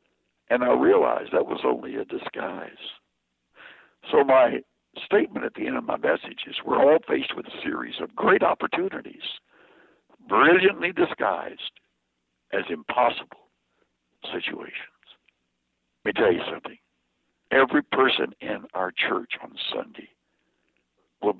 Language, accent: English, American